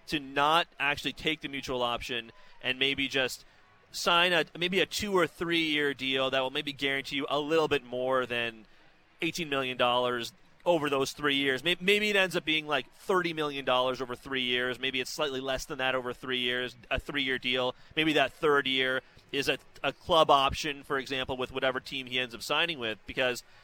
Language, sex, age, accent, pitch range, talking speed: English, male, 30-49, American, 130-165 Hz, 195 wpm